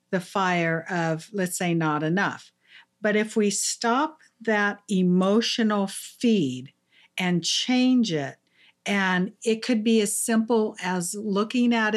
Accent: American